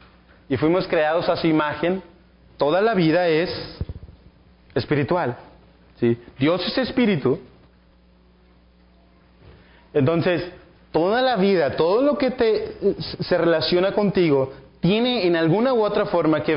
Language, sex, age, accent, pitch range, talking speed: Spanish, male, 30-49, Mexican, 135-185 Hz, 110 wpm